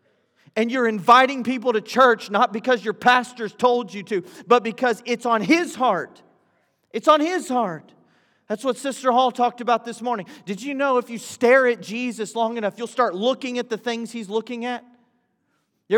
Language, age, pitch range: English, 40-59, 215-260 Hz